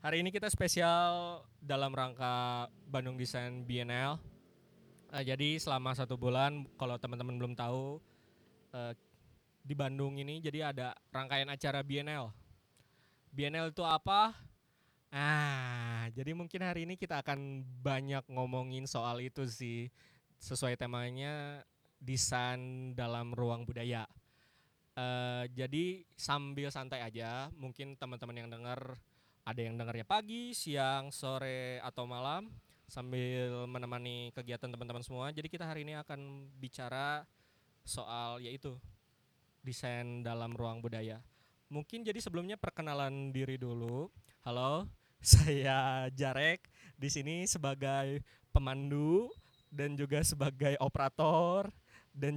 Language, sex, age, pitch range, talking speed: Indonesian, male, 20-39, 125-145 Hz, 115 wpm